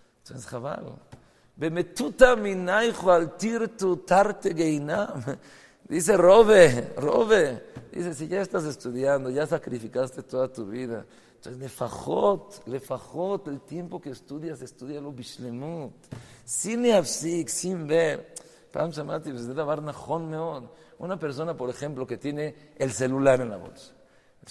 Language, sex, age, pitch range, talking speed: English, male, 50-69, 130-180 Hz, 90 wpm